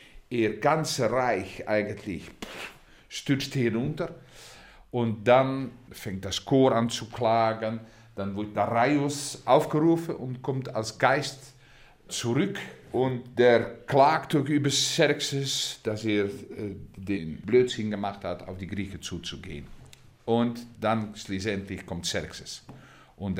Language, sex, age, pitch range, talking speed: German, male, 50-69, 100-145 Hz, 115 wpm